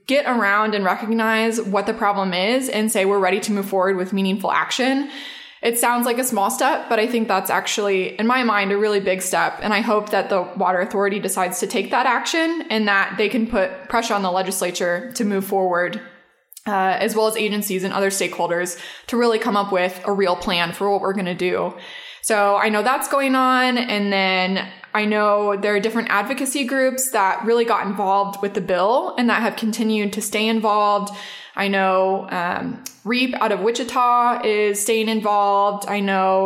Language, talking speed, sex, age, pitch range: English, 200 wpm, female, 20-39, 195-235 Hz